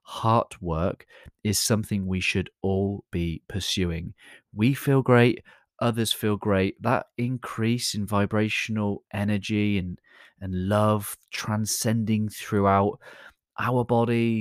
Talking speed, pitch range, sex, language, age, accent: 110 wpm, 95-115 Hz, male, English, 30-49, British